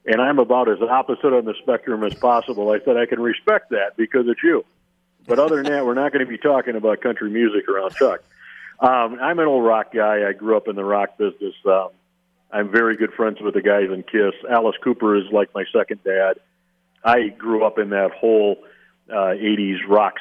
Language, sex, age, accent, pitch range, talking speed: English, male, 50-69, American, 95-120 Hz, 215 wpm